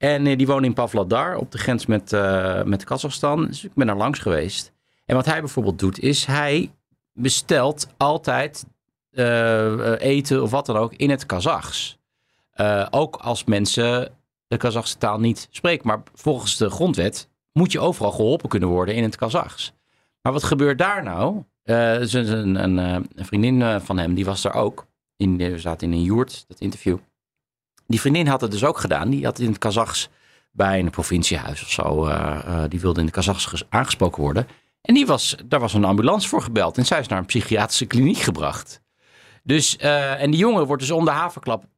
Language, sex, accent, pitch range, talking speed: Dutch, male, Dutch, 100-135 Hz, 190 wpm